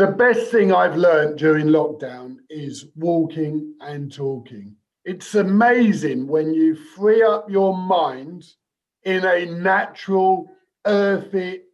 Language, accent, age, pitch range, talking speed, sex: English, British, 50-69, 150-200 Hz, 120 wpm, male